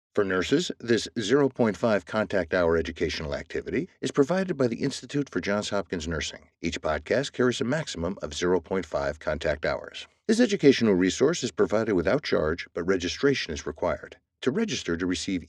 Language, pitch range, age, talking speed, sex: English, 90-140 Hz, 60-79, 160 wpm, male